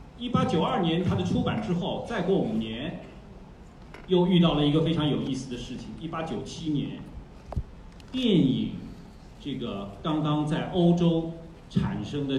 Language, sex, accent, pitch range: Chinese, male, native, 135-180 Hz